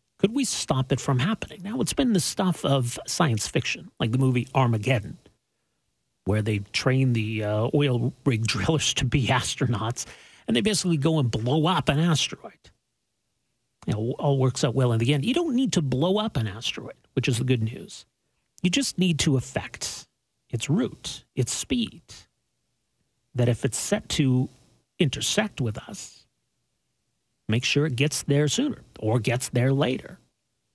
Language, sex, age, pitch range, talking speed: English, male, 40-59, 120-155 Hz, 170 wpm